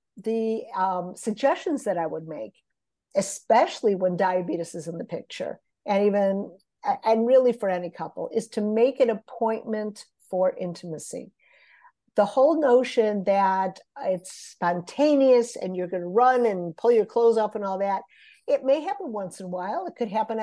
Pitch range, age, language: 195-240 Hz, 50-69, English